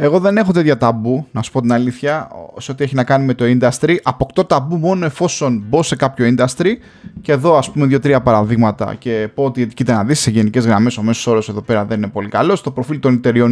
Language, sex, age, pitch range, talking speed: Greek, male, 20-39, 110-150 Hz, 240 wpm